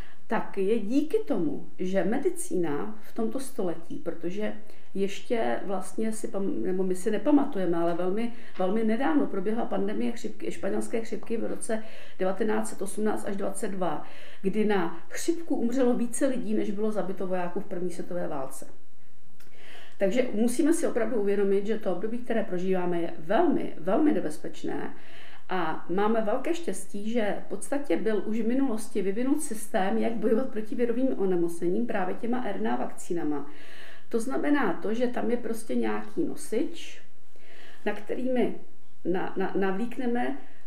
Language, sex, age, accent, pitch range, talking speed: Czech, female, 50-69, native, 190-240 Hz, 135 wpm